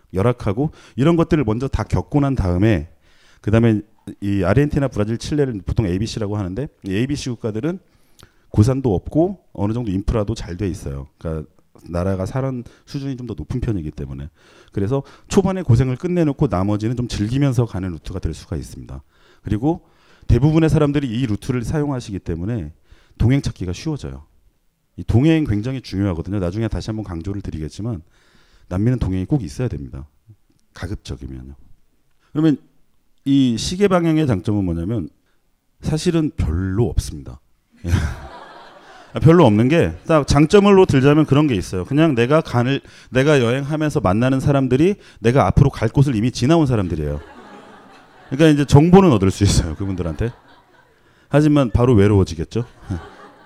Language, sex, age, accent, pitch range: Korean, male, 40-59, native, 95-145 Hz